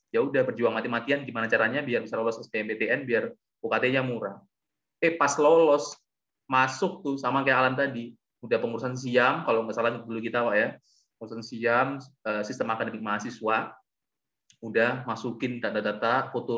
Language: Indonesian